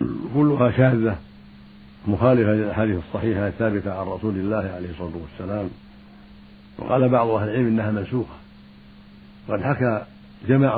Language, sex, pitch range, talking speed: Arabic, male, 70-110 Hz, 110 wpm